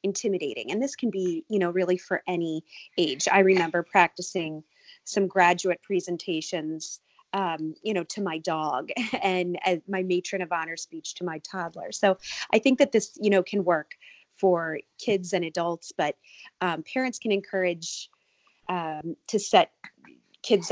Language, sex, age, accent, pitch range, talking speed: English, female, 30-49, American, 175-215 Hz, 155 wpm